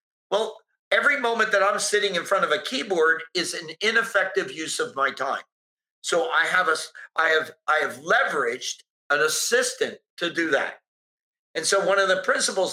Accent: American